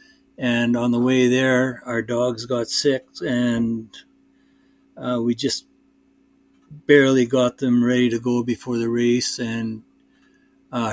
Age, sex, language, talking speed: 60-79, male, English, 130 wpm